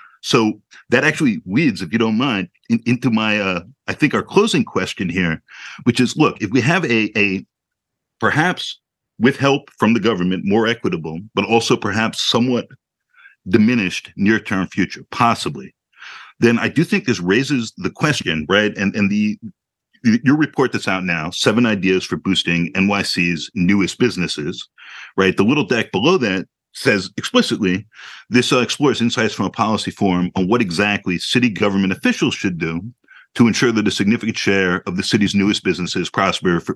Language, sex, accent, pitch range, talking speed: English, male, American, 95-125 Hz, 170 wpm